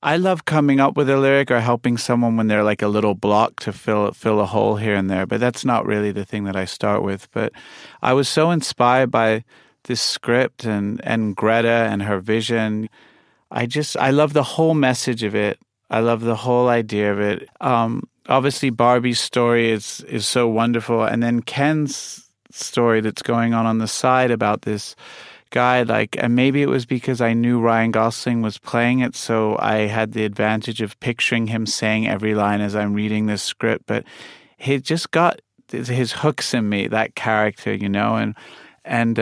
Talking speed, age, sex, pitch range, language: 195 wpm, 30-49, male, 105-125 Hz, English